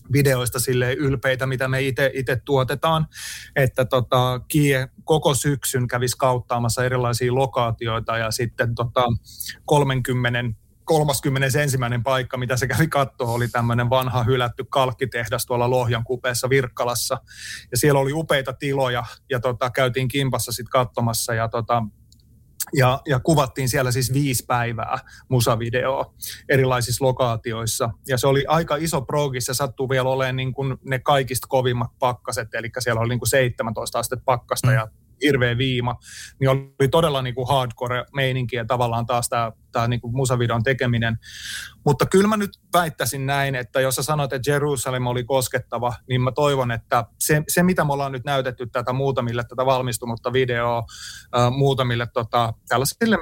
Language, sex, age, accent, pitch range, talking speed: Finnish, male, 30-49, native, 120-135 Hz, 145 wpm